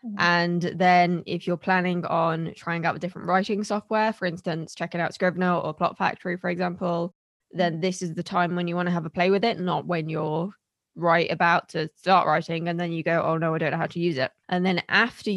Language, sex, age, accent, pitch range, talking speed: English, female, 10-29, British, 170-185 Hz, 235 wpm